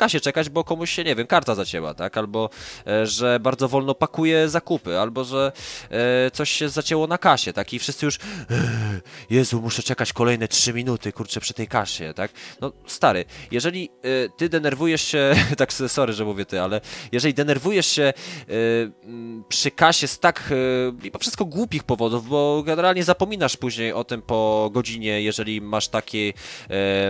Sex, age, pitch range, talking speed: male, 20-39, 110-145 Hz, 175 wpm